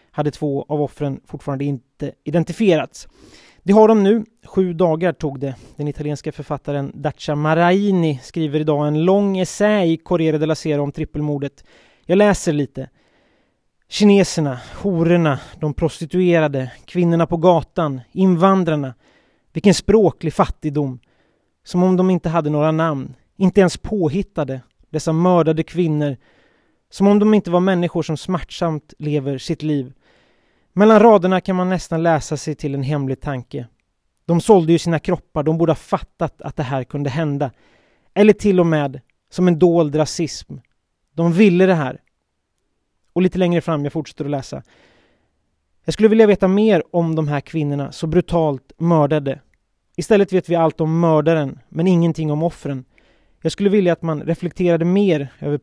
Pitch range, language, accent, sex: 145-180 Hz, Swedish, native, male